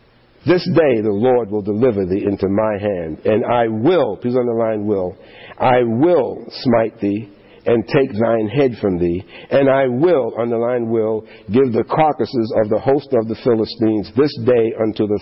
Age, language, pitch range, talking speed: 50-69, English, 100-120 Hz, 175 wpm